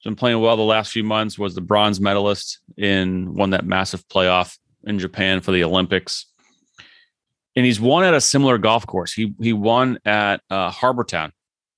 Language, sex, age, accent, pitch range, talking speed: English, male, 30-49, American, 90-110 Hz, 180 wpm